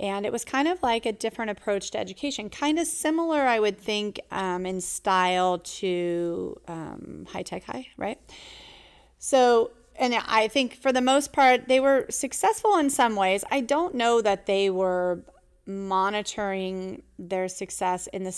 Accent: American